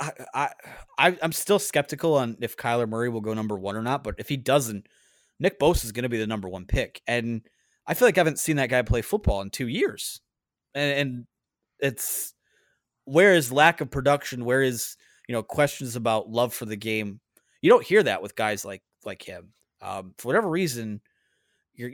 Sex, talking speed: male, 205 wpm